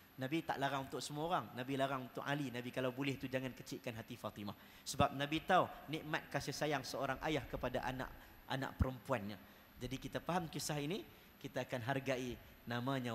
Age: 30-49